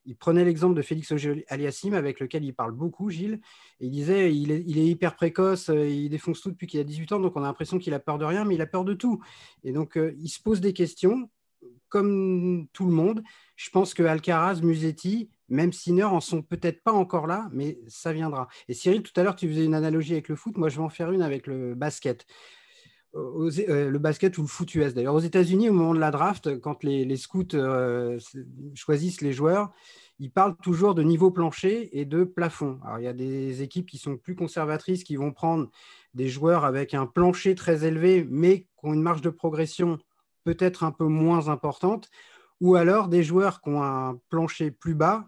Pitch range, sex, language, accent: 150-185 Hz, male, French, French